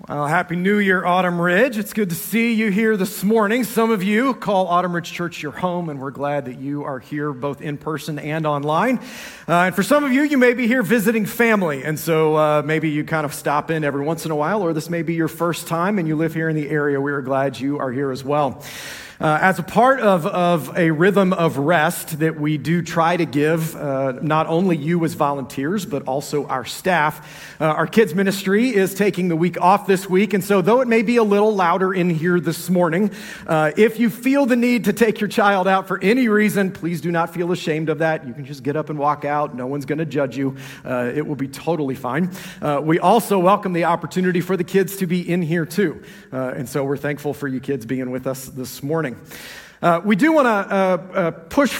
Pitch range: 155-205 Hz